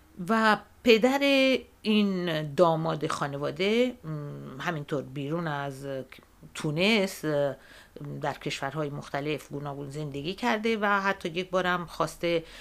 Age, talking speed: 50-69, 95 wpm